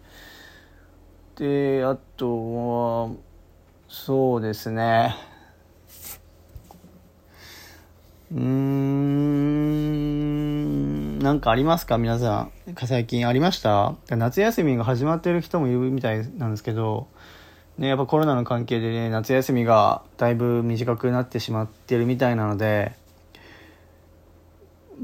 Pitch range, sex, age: 90-130 Hz, male, 40-59